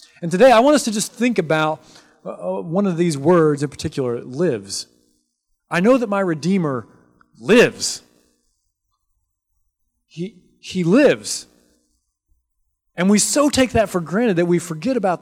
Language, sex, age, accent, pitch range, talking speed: English, male, 30-49, American, 120-180 Hz, 140 wpm